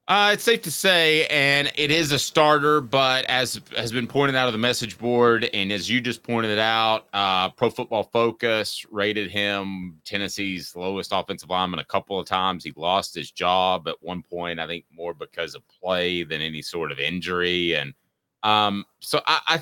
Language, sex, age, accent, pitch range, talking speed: English, male, 30-49, American, 95-130 Hz, 195 wpm